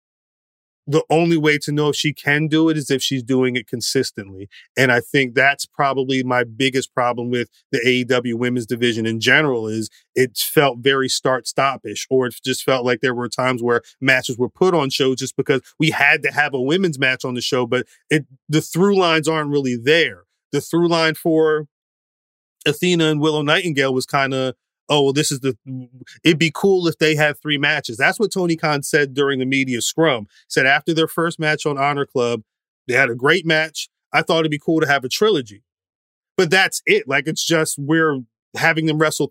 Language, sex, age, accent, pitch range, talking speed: English, male, 30-49, American, 130-155 Hz, 205 wpm